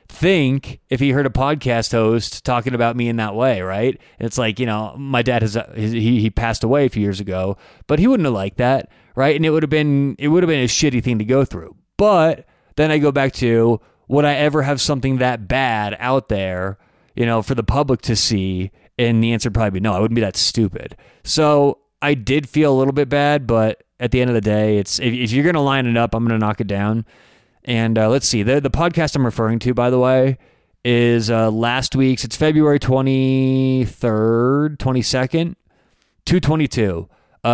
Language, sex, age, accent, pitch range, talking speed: English, male, 20-39, American, 110-135 Hz, 215 wpm